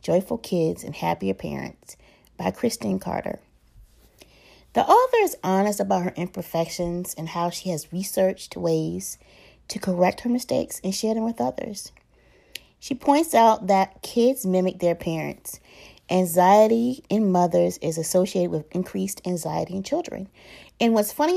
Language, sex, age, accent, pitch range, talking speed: English, female, 30-49, American, 170-200 Hz, 145 wpm